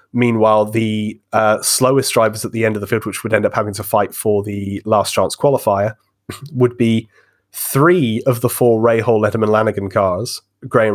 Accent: British